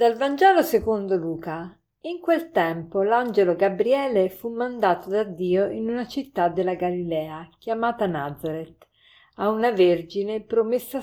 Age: 50-69